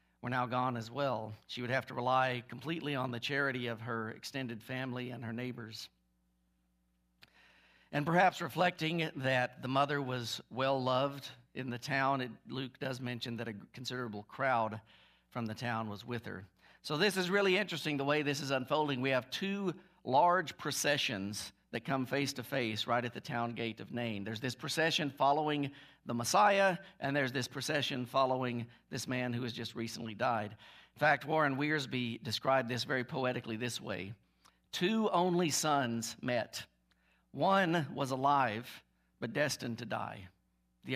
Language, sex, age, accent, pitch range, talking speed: English, male, 50-69, American, 115-140 Hz, 165 wpm